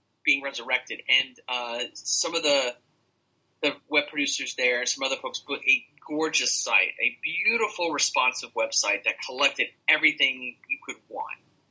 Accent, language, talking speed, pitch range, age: American, English, 145 wpm, 125-155 Hz, 30-49